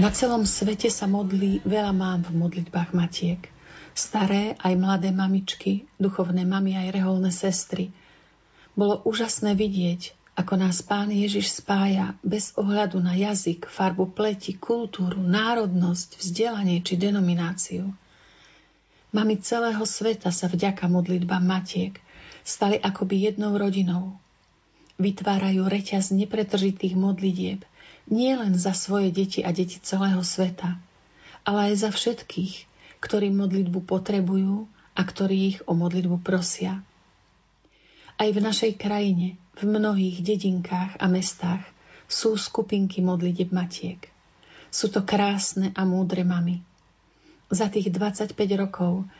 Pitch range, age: 180-205 Hz, 40-59